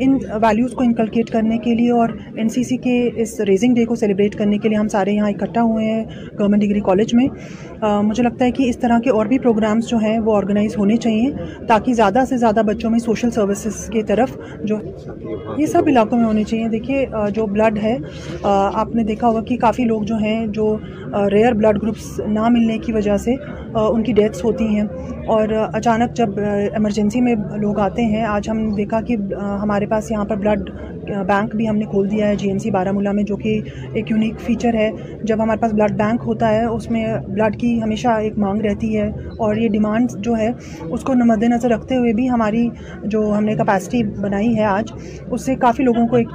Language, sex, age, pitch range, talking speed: Urdu, female, 30-49, 210-235 Hz, 210 wpm